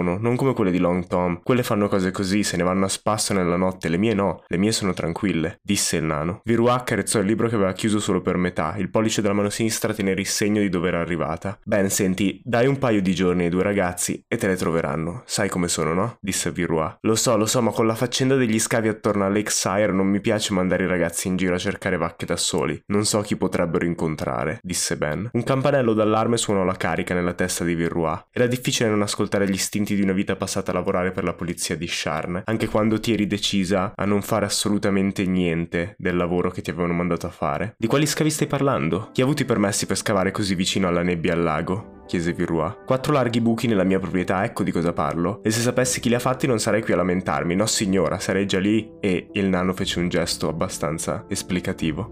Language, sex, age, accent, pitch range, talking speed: Italian, male, 20-39, native, 90-110 Hz, 230 wpm